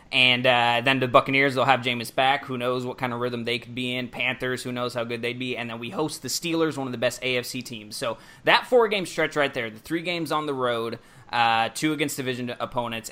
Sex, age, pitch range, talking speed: male, 20-39, 115-130 Hz, 250 wpm